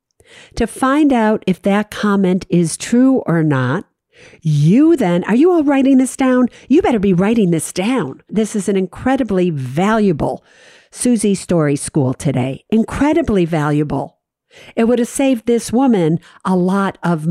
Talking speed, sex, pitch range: 155 wpm, female, 170-235 Hz